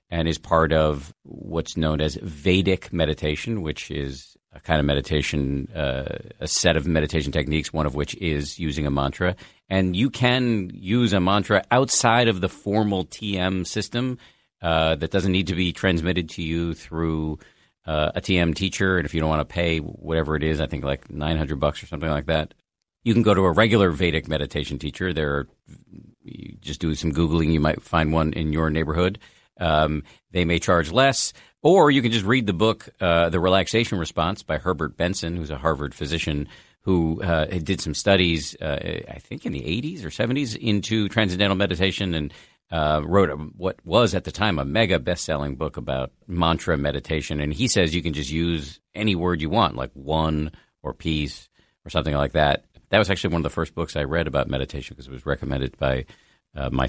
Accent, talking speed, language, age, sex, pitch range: American, 200 wpm, English, 50-69, male, 75-95 Hz